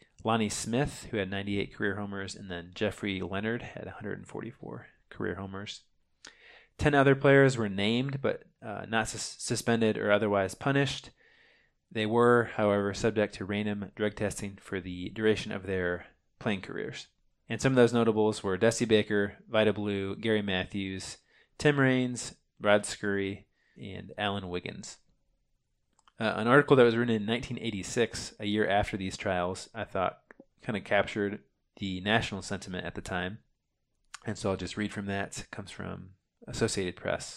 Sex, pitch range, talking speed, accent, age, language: male, 100-115 Hz, 155 wpm, American, 20-39, English